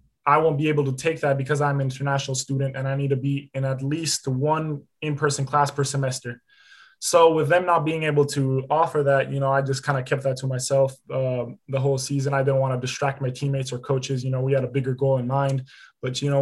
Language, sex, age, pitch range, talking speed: English, male, 20-39, 130-140 Hz, 250 wpm